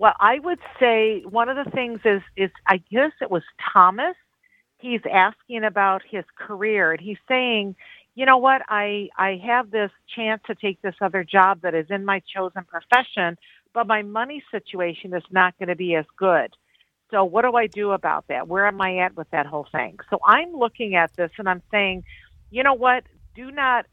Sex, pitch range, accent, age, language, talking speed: female, 180-220 Hz, American, 50-69, English, 205 wpm